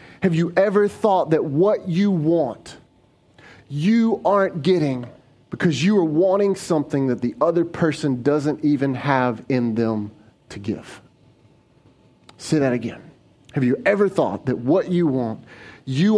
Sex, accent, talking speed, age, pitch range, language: male, American, 145 wpm, 30-49, 125-165 Hz, English